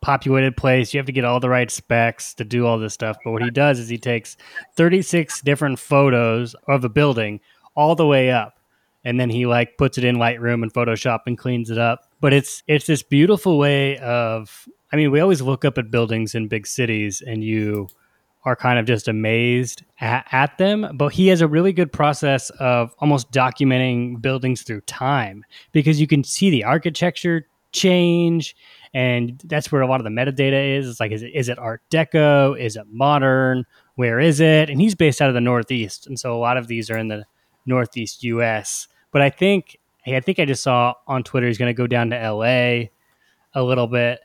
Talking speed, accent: 215 wpm, American